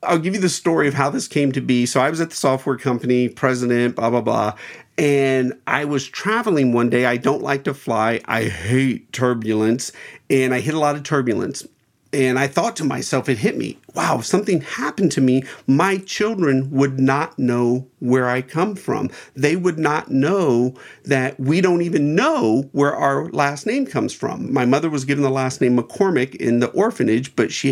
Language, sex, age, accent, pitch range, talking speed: English, male, 50-69, American, 125-150 Hz, 200 wpm